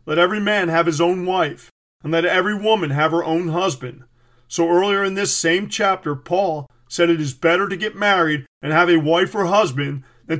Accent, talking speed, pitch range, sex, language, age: American, 210 wpm, 155-185 Hz, male, English, 40-59